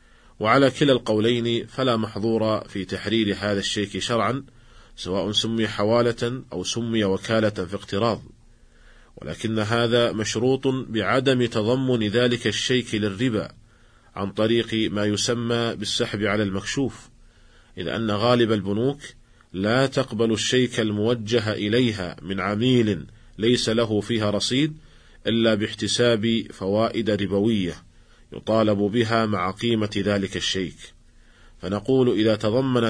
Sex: male